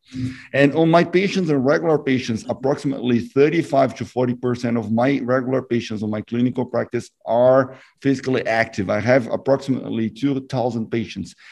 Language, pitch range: English, 120-135 Hz